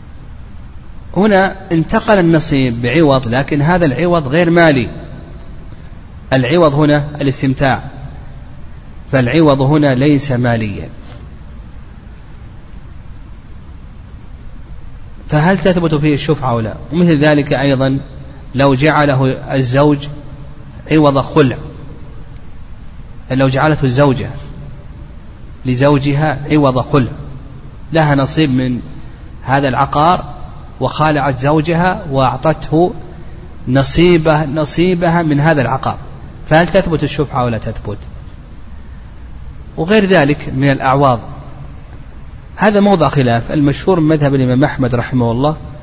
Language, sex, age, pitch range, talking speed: Arabic, male, 30-49, 125-155 Hz, 85 wpm